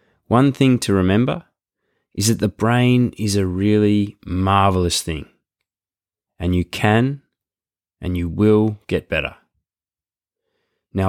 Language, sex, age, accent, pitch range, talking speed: English, male, 20-39, Australian, 90-115 Hz, 120 wpm